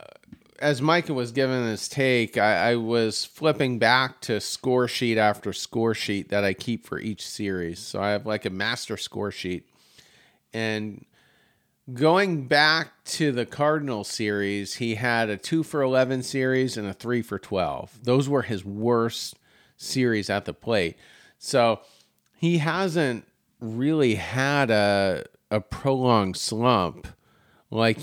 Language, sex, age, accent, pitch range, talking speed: English, male, 40-59, American, 105-130 Hz, 135 wpm